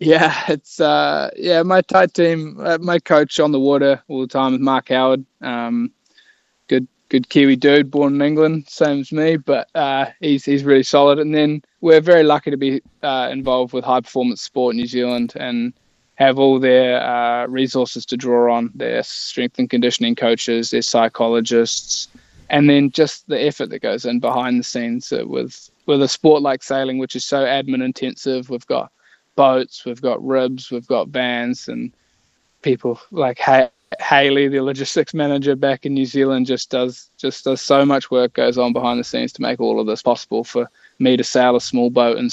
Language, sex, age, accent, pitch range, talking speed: English, male, 20-39, Australian, 120-140 Hz, 195 wpm